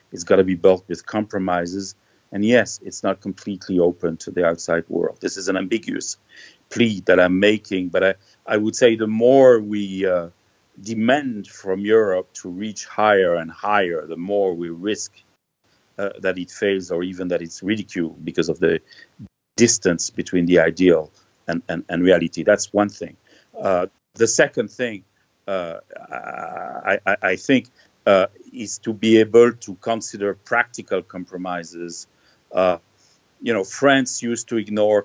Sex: male